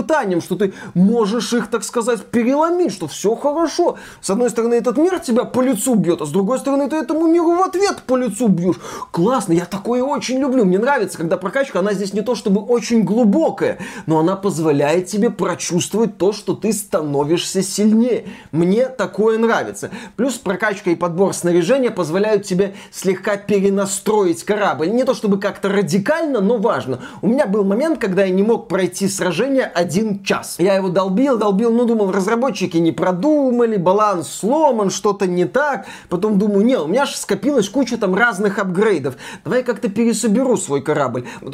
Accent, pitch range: native, 185-235 Hz